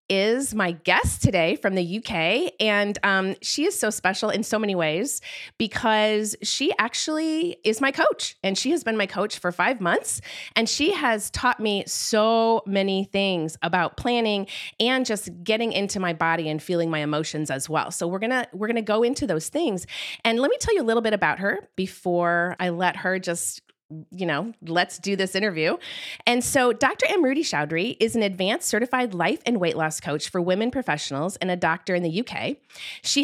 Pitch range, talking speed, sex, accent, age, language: 175-235 Hz, 200 wpm, female, American, 30-49, English